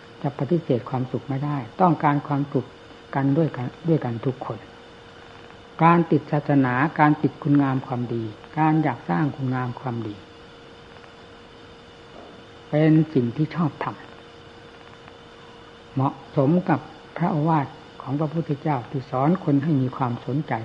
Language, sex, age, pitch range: Thai, female, 60-79, 130-155 Hz